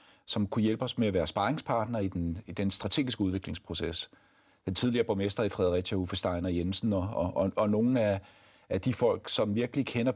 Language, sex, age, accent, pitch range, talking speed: Danish, male, 40-59, native, 100-130 Hz, 200 wpm